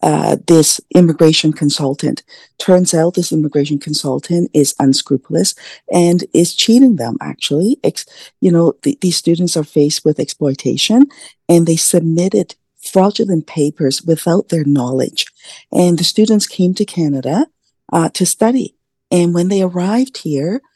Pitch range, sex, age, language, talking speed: 150-180 Hz, female, 50-69, English, 140 wpm